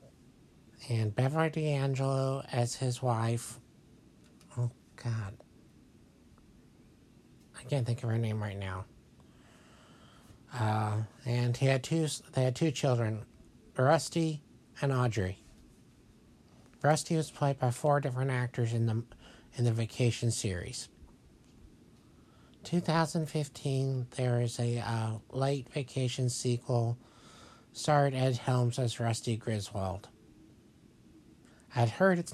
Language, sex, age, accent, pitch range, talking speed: English, male, 60-79, American, 115-150 Hz, 110 wpm